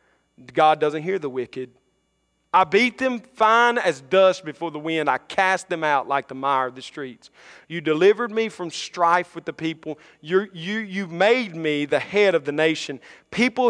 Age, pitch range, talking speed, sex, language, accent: 40-59, 140-190 Hz, 190 wpm, male, English, American